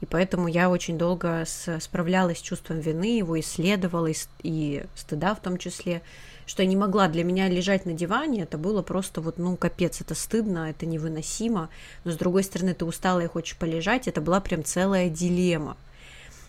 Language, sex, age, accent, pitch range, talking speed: Russian, female, 20-39, native, 165-195 Hz, 180 wpm